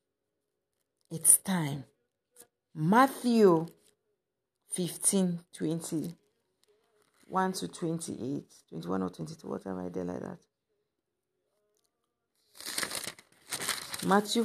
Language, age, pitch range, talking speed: English, 50-69, 155-215 Hz, 75 wpm